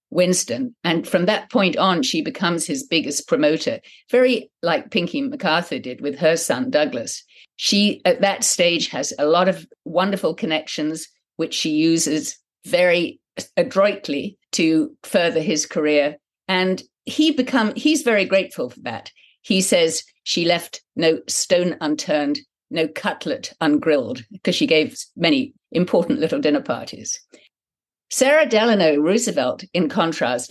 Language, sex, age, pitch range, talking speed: English, female, 50-69, 160-270 Hz, 140 wpm